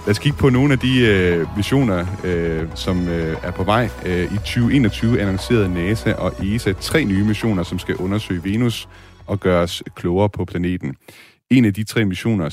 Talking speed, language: 185 wpm, Danish